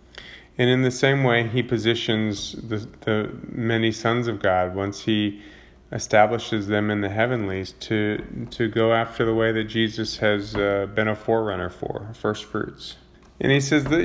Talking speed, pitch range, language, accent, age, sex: 170 wpm, 110-140 Hz, English, American, 30-49, male